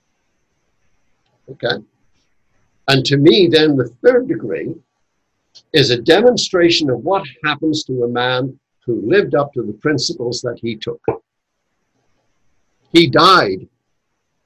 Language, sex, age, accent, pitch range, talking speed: English, male, 60-79, American, 135-190 Hz, 115 wpm